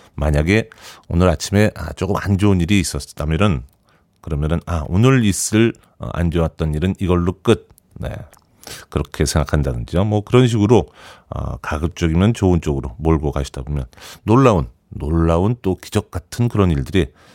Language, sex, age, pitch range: Korean, male, 40-59, 75-105 Hz